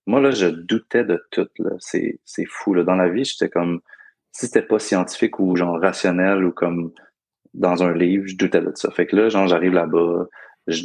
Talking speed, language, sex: 215 wpm, French, male